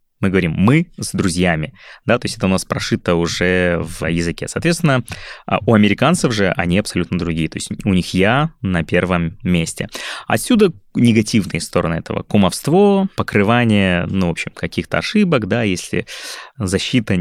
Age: 20-39